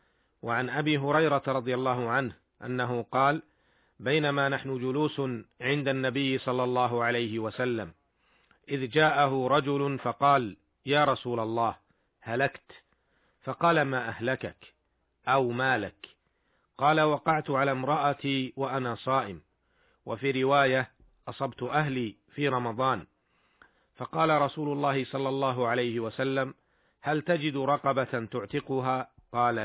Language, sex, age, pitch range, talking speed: Arabic, male, 40-59, 125-145 Hz, 110 wpm